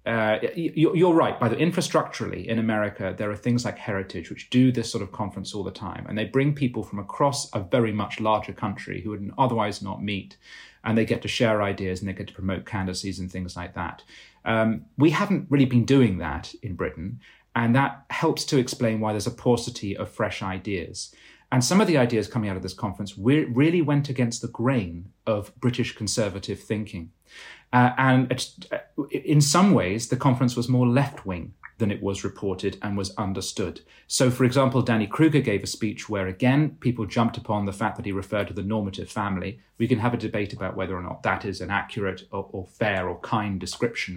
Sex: male